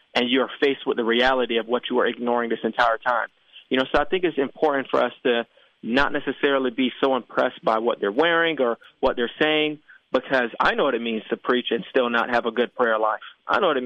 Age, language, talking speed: 20-39, English, 245 wpm